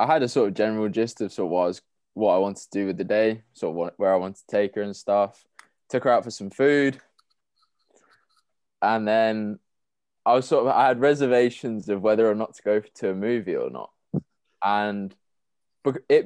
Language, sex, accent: English, male, British